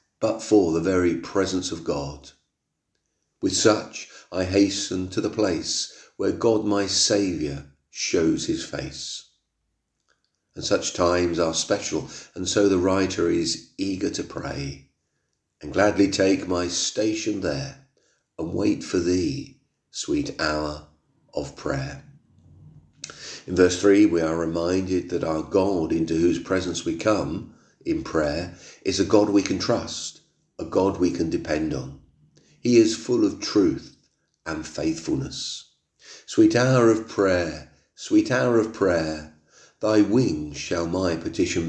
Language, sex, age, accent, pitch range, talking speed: English, male, 40-59, British, 80-105 Hz, 140 wpm